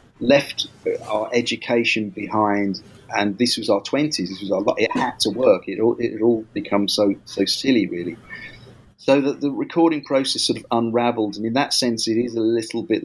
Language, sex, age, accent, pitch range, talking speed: English, male, 40-59, British, 100-120 Hz, 200 wpm